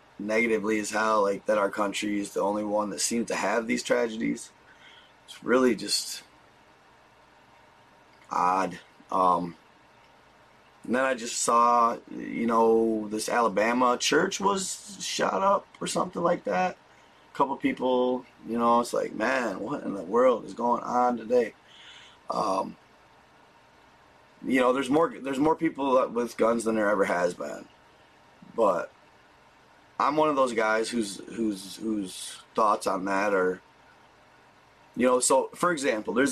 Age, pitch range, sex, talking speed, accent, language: 20-39, 110-150 Hz, male, 150 wpm, American, English